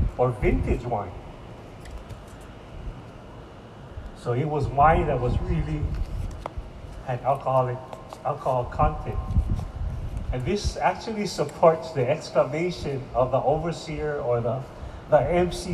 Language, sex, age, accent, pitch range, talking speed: English, male, 40-59, American, 115-160 Hz, 105 wpm